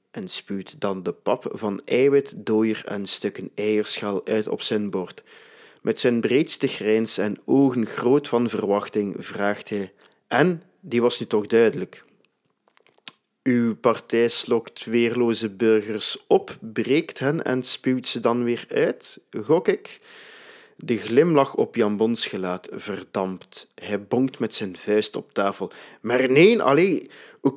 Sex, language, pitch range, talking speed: male, Dutch, 105-130 Hz, 145 wpm